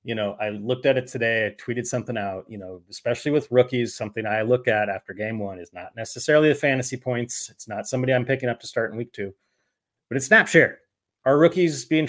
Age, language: 30-49, English